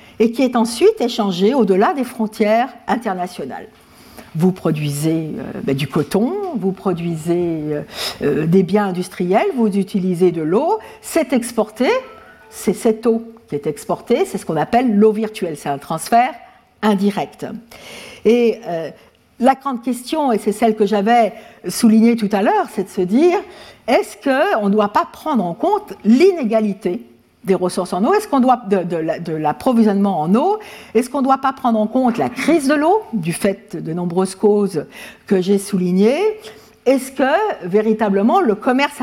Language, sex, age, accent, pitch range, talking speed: French, female, 60-79, French, 195-265 Hz, 165 wpm